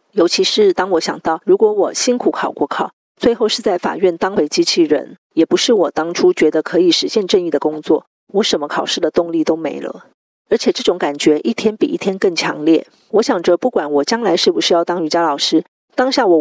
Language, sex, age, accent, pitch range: Chinese, female, 40-59, American, 165-245 Hz